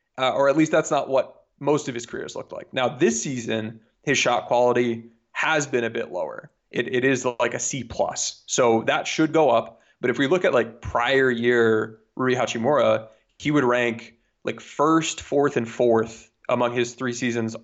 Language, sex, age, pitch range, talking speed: English, male, 20-39, 115-135 Hz, 195 wpm